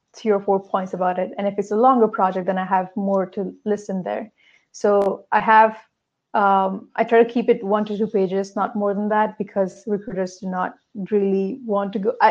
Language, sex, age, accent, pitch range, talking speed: English, female, 20-39, Indian, 195-225 Hz, 215 wpm